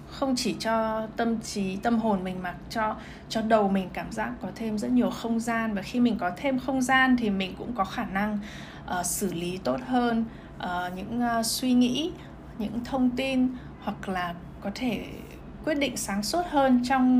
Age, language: 20-39, Vietnamese